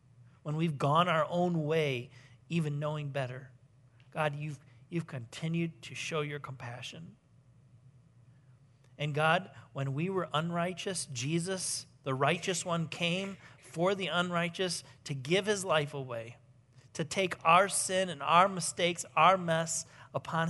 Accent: American